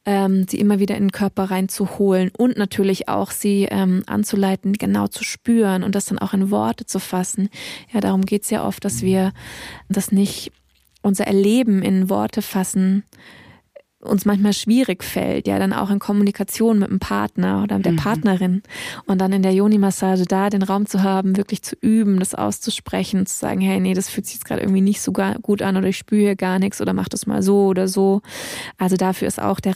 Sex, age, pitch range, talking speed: female, 20-39, 190-205 Hz, 205 wpm